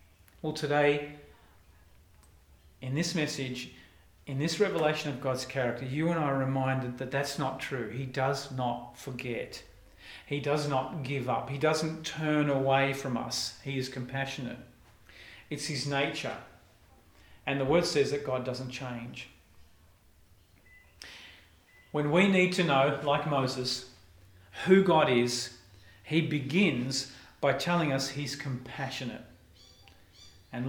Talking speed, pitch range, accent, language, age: 130 wpm, 105-165 Hz, Australian, English, 40-59